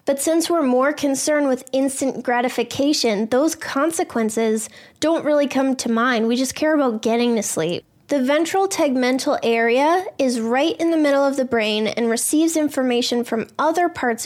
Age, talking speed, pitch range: 10-29, 170 wpm, 235-280 Hz